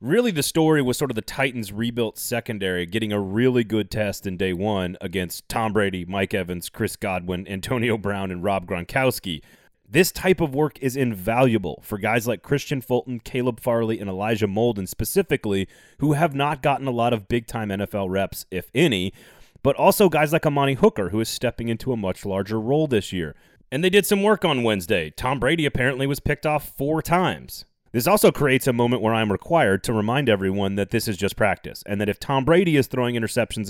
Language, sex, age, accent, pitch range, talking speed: English, male, 30-49, American, 100-135 Hz, 205 wpm